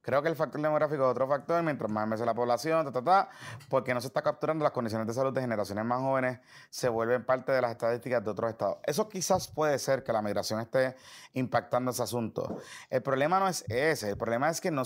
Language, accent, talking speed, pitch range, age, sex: Spanish, Venezuelan, 240 wpm, 125-165 Hz, 30-49, male